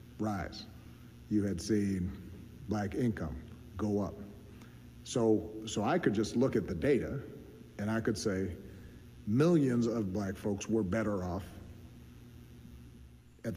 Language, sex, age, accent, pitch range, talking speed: English, male, 50-69, American, 90-110 Hz, 130 wpm